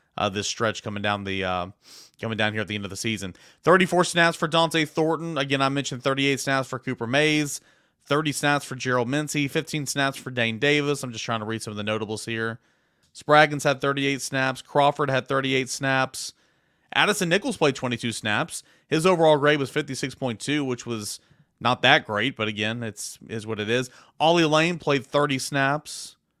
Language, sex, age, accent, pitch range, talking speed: English, male, 30-49, American, 115-145 Hz, 190 wpm